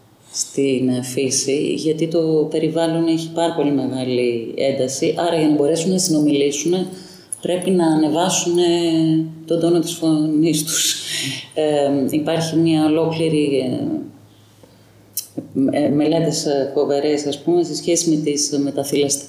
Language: Greek